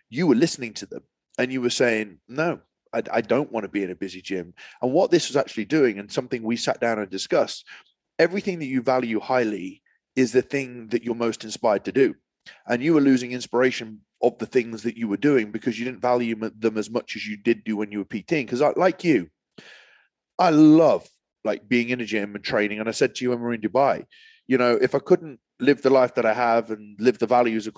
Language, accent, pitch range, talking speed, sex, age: English, British, 115-145 Hz, 240 wpm, male, 30-49